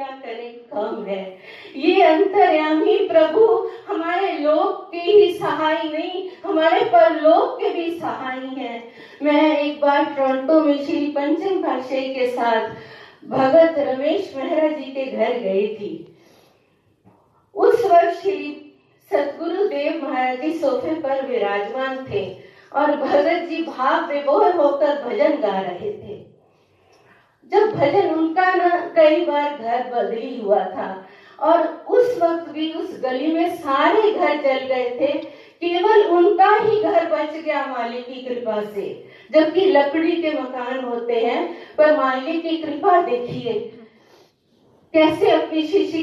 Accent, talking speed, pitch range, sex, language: native, 120 wpm, 250-340 Hz, female, Hindi